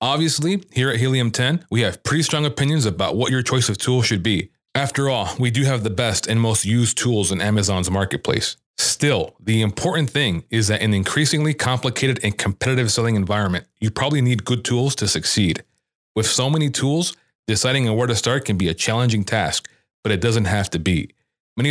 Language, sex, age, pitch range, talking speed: English, male, 30-49, 105-135 Hz, 205 wpm